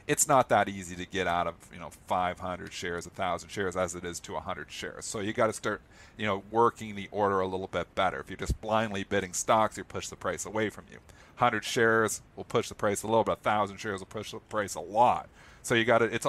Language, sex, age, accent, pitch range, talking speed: English, male, 40-59, American, 95-115 Hz, 260 wpm